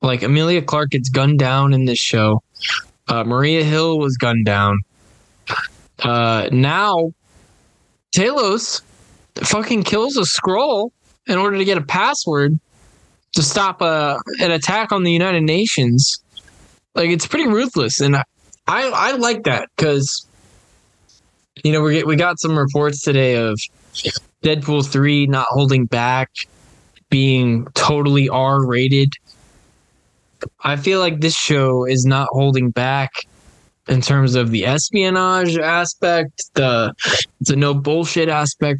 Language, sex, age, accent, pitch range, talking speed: English, male, 10-29, American, 125-160 Hz, 135 wpm